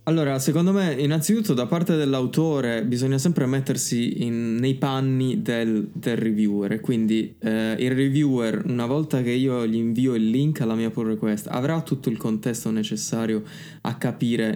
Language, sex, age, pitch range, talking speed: Italian, male, 20-39, 110-130 Hz, 160 wpm